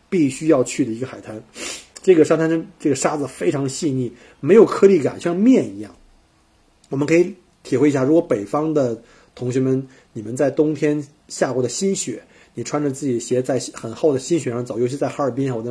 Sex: male